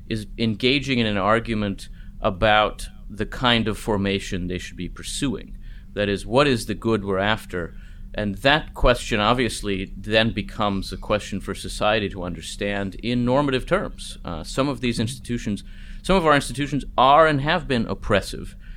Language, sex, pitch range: English, male, 100-125 Hz